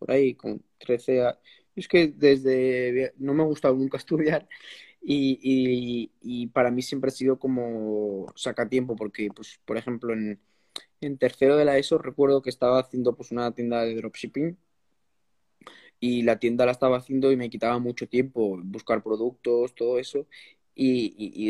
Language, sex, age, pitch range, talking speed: Spanish, male, 20-39, 115-135 Hz, 165 wpm